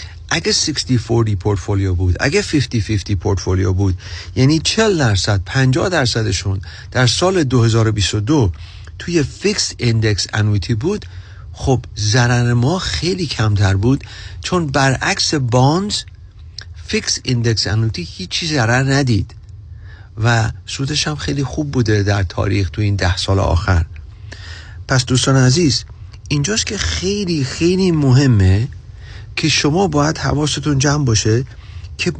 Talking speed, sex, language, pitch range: 125 wpm, male, Persian, 95-140 Hz